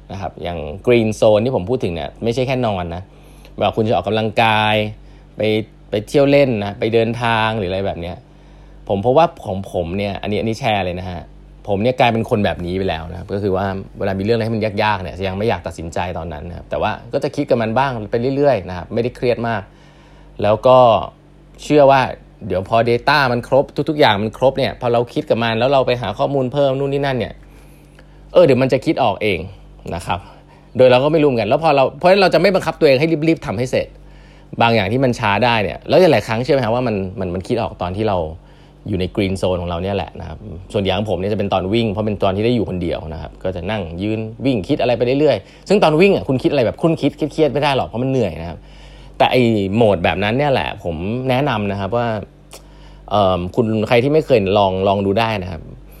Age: 20-39